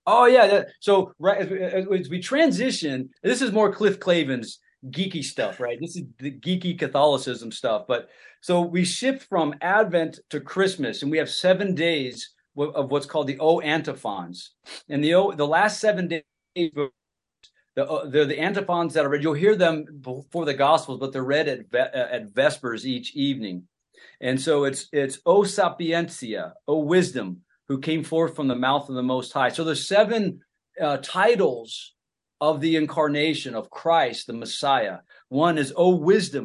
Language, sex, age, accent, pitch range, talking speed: English, male, 40-59, American, 135-180 Hz, 170 wpm